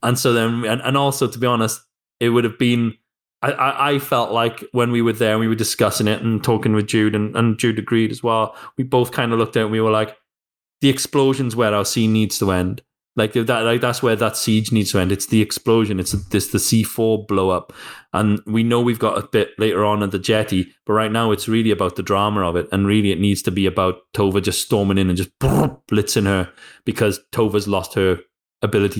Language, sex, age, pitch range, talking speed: English, male, 20-39, 100-120 Hz, 245 wpm